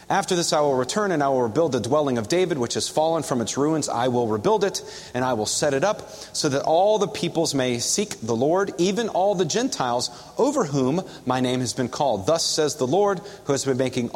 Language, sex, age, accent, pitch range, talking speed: English, male, 30-49, American, 125-165 Hz, 240 wpm